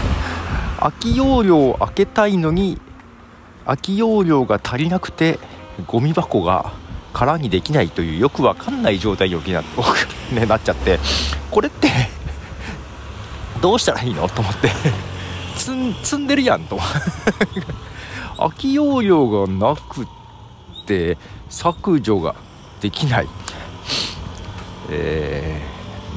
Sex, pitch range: male, 85-145 Hz